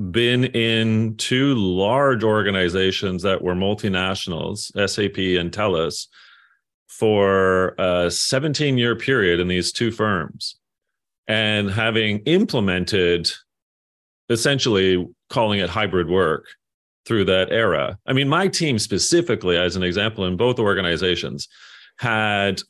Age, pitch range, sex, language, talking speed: 30-49, 95-125 Hz, male, English, 110 wpm